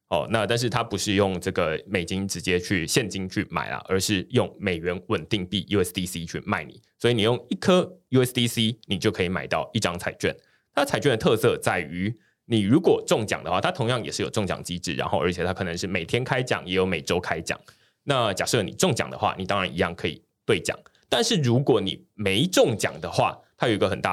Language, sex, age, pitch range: Chinese, male, 20-39, 95-145 Hz